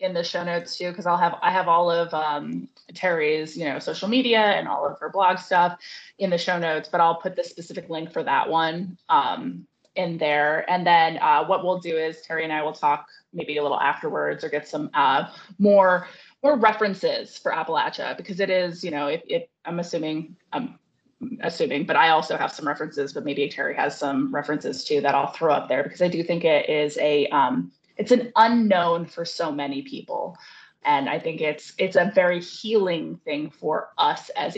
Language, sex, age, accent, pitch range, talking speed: English, female, 20-39, American, 150-185 Hz, 210 wpm